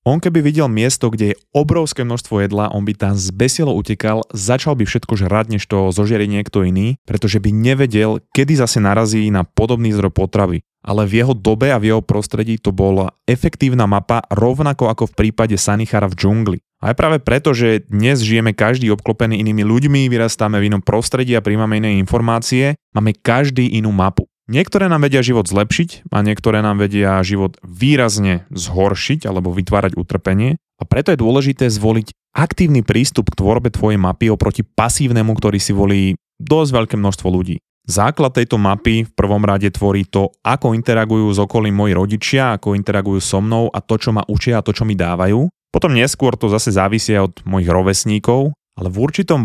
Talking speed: 180 wpm